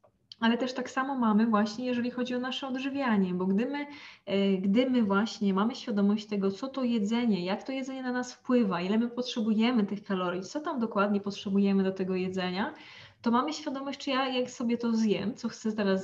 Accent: native